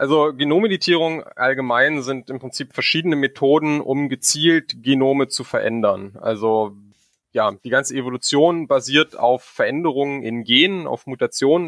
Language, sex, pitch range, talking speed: German, male, 120-145 Hz, 130 wpm